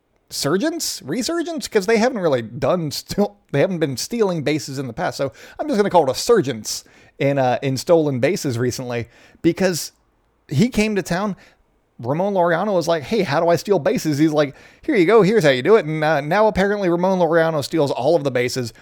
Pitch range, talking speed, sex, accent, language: 130-185 Hz, 215 wpm, male, American, English